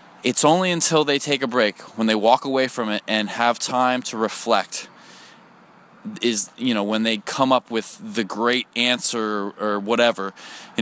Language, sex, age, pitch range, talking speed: English, male, 20-39, 110-140 Hz, 185 wpm